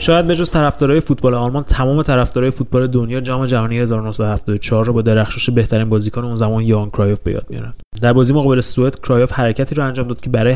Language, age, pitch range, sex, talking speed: Persian, 30-49, 110-130 Hz, male, 200 wpm